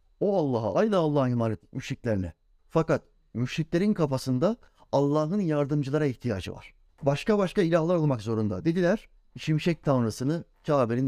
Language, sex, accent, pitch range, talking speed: Turkish, male, native, 120-165 Hz, 120 wpm